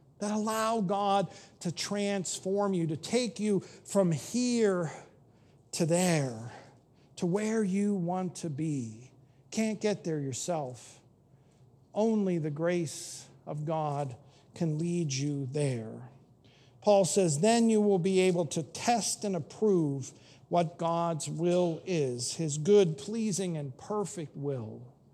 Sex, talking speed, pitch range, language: male, 125 wpm, 140-200 Hz, English